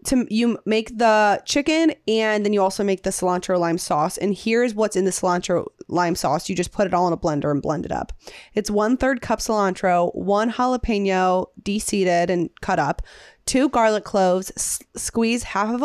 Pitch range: 185-240 Hz